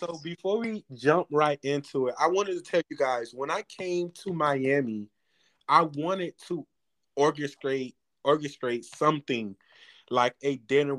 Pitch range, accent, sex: 130-160 Hz, American, male